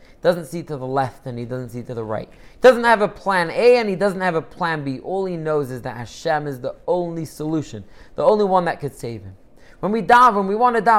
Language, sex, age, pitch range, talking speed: English, male, 30-49, 145-205 Hz, 260 wpm